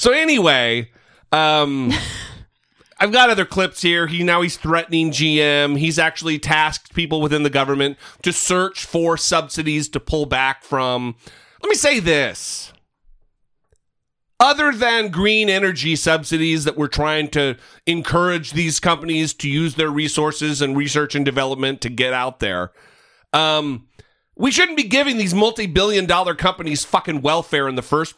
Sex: male